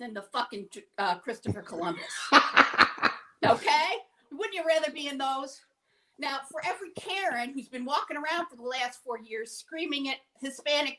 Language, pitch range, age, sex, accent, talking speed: English, 225-340 Hz, 50-69, female, American, 160 wpm